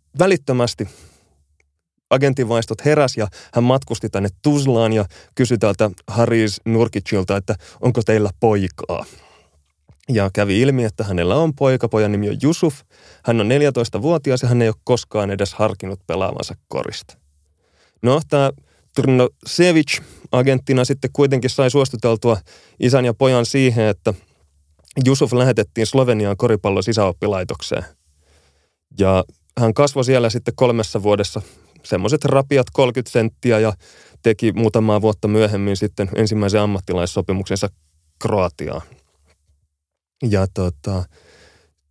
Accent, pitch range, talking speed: native, 100-130 Hz, 115 wpm